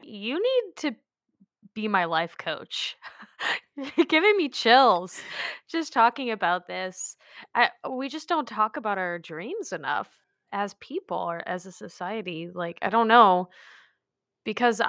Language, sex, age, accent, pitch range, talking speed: English, female, 20-39, American, 180-240 Hz, 135 wpm